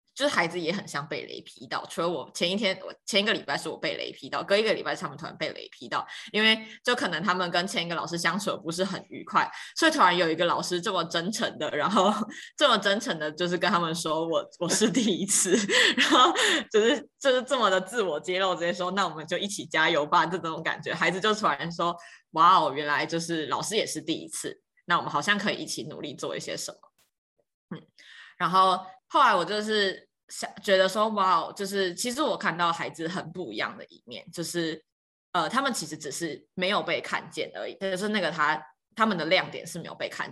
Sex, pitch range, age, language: female, 170-215 Hz, 20-39, Chinese